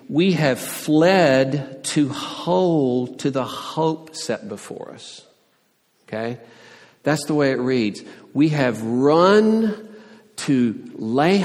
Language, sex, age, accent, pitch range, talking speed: English, male, 50-69, American, 115-145 Hz, 115 wpm